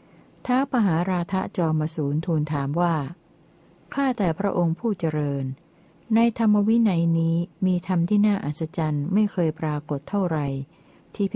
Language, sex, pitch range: Thai, female, 155-175 Hz